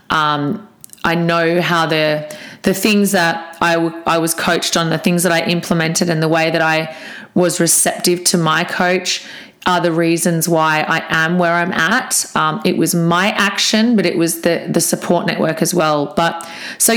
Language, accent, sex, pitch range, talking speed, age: English, Australian, female, 165-200 Hz, 190 wpm, 30-49